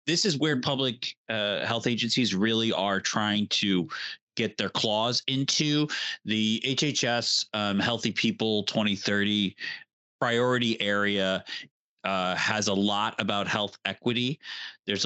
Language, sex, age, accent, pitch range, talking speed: English, male, 30-49, American, 100-125 Hz, 125 wpm